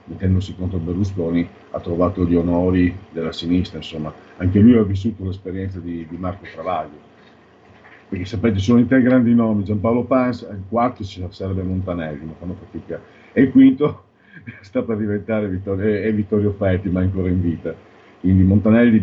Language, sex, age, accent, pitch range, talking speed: Italian, male, 50-69, native, 90-110 Hz, 180 wpm